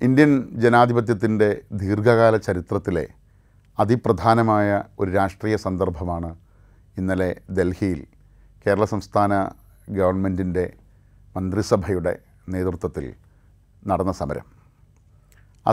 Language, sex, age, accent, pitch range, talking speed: Malayalam, male, 30-49, native, 95-110 Hz, 70 wpm